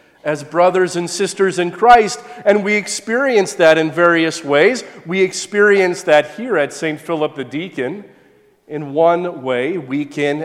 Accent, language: American, English